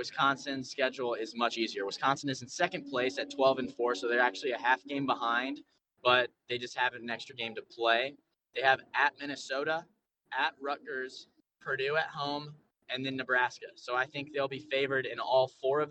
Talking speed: 190 wpm